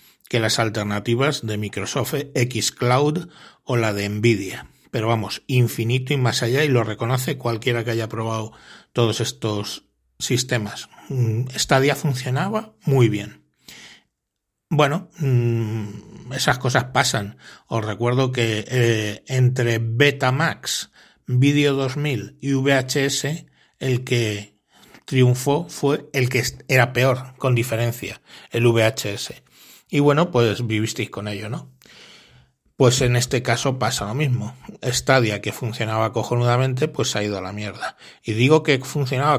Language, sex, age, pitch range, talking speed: Spanish, male, 60-79, 110-135 Hz, 135 wpm